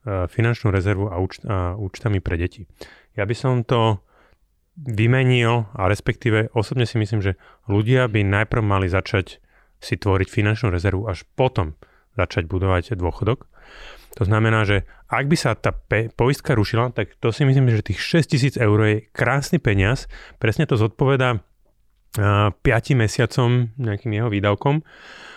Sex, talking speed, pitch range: male, 150 wpm, 100-120 Hz